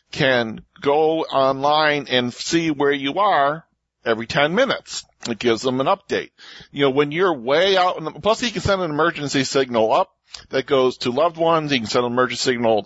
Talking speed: 200 wpm